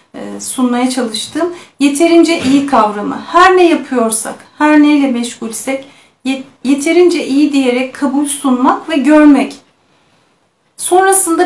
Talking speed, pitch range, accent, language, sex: 105 wpm, 245-305 Hz, native, Turkish, female